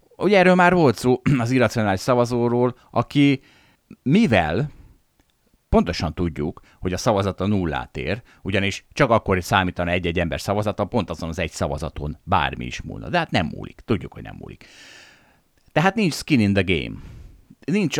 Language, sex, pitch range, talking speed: Hungarian, male, 90-135 Hz, 155 wpm